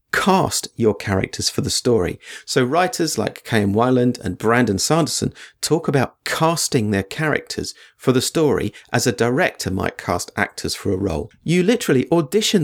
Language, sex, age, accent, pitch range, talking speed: English, male, 40-59, British, 100-145 Hz, 160 wpm